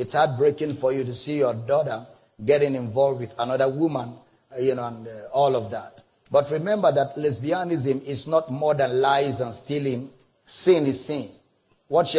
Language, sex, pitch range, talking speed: English, male, 130-165 Hz, 170 wpm